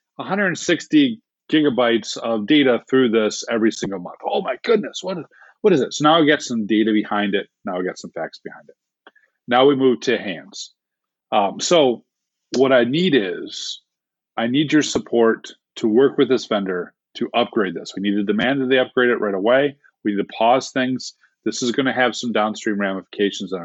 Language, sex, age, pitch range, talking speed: English, male, 40-59, 105-135 Hz, 200 wpm